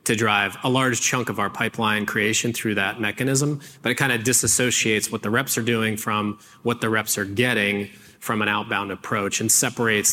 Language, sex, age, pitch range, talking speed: English, male, 30-49, 105-125 Hz, 200 wpm